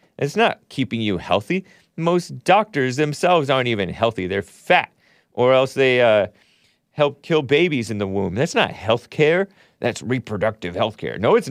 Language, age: English, 40-59